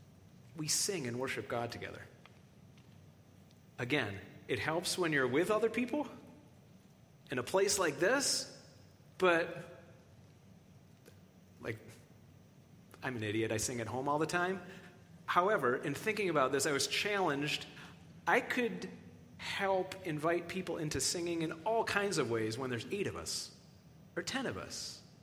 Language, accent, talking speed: English, American, 145 wpm